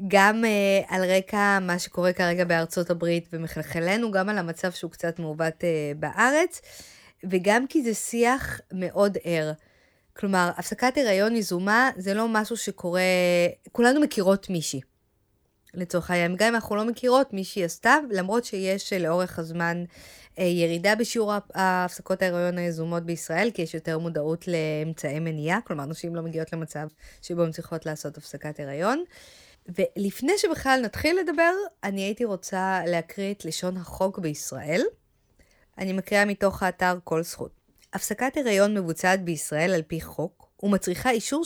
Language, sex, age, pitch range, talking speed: Hebrew, female, 20-39, 170-215 Hz, 135 wpm